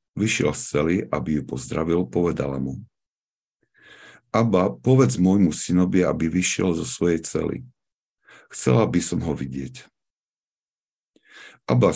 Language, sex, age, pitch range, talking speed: Slovak, male, 50-69, 70-95 Hz, 115 wpm